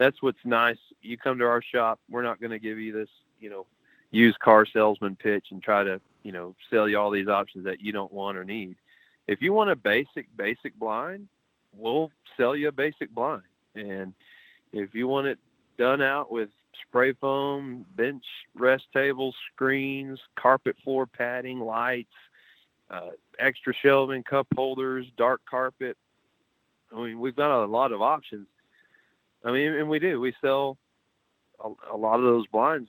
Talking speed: 175 wpm